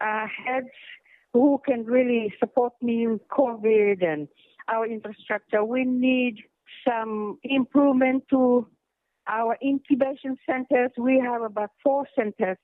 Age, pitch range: 60-79, 215-280 Hz